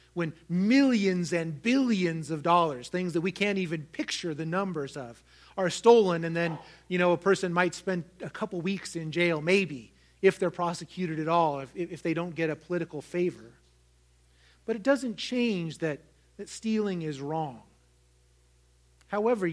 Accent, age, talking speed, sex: American, 30-49, 165 wpm, male